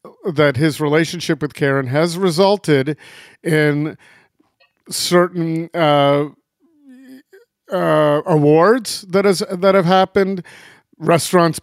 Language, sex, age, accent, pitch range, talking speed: English, male, 50-69, American, 135-170 Hz, 95 wpm